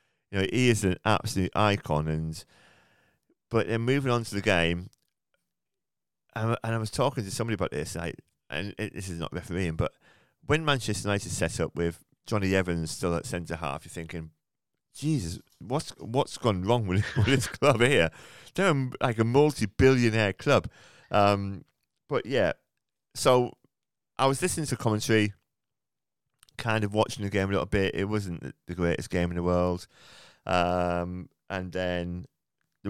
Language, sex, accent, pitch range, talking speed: English, male, British, 90-115 Hz, 165 wpm